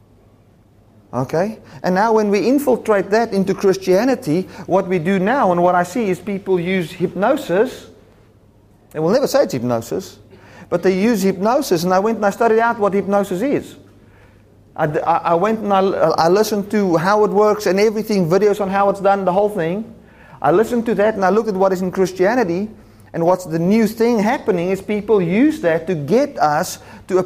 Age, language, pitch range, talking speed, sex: 40-59, English, 140-205 Hz, 195 wpm, male